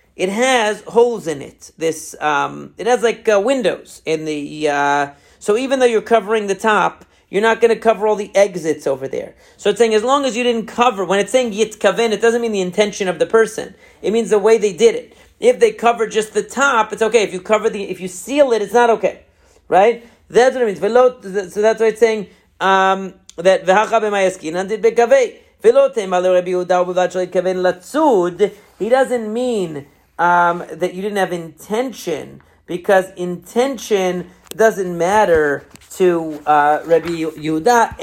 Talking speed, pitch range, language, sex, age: 165 wpm, 180-230 Hz, English, male, 40-59